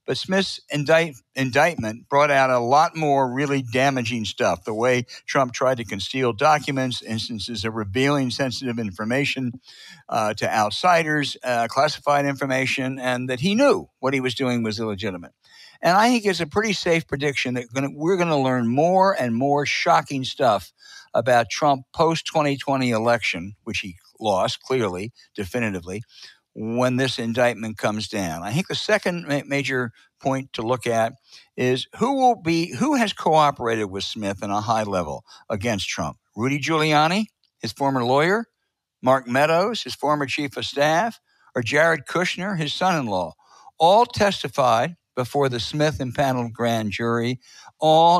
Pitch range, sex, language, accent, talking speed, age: 120-155 Hz, male, English, American, 155 wpm, 60-79